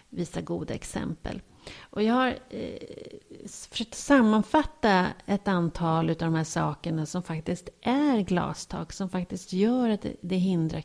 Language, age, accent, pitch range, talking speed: Swedish, 40-59, native, 165-220 Hz, 140 wpm